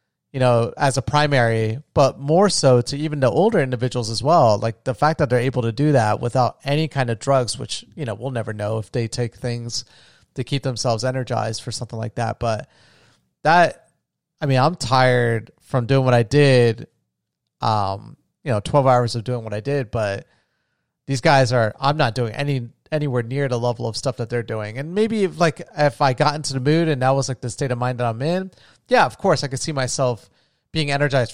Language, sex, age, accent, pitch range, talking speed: English, male, 30-49, American, 120-150 Hz, 220 wpm